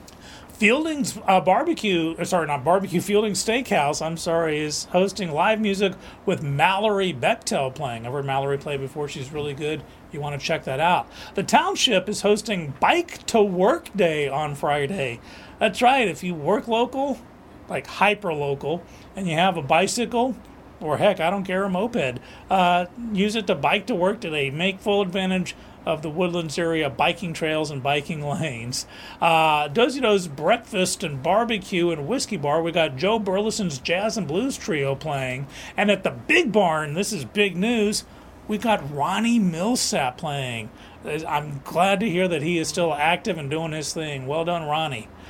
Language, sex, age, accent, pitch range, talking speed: English, male, 40-59, American, 150-205 Hz, 175 wpm